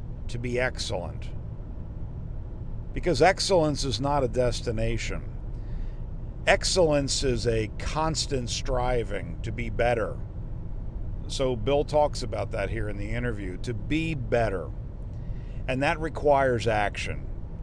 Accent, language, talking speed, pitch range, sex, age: American, English, 110 wpm, 105-135 Hz, male, 50-69